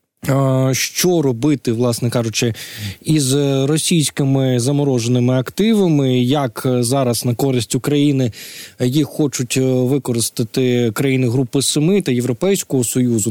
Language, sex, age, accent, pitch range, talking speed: Ukrainian, male, 20-39, native, 125-150 Hz, 100 wpm